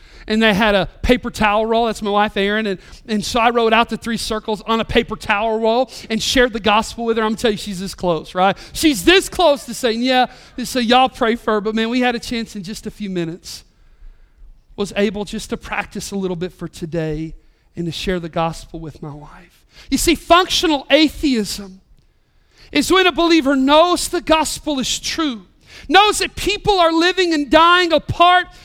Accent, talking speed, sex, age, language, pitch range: American, 210 wpm, male, 40-59, English, 175-255 Hz